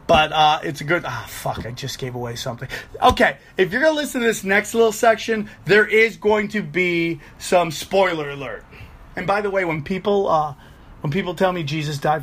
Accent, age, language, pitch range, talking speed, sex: American, 30-49, English, 150-180 Hz, 215 wpm, male